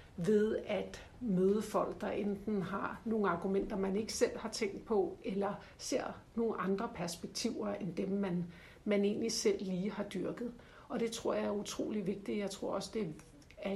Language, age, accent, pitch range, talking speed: Danish, 60-79, native, 195-220 Hz, 180 wpm